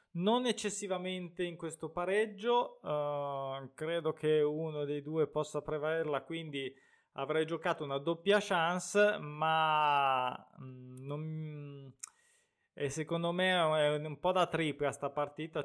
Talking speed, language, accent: 120 wpm, Italian, native